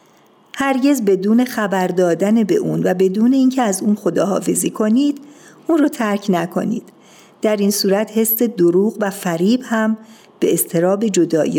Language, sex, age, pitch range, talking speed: Persian, female, 50-69, 180-230 Hz, 145 wpm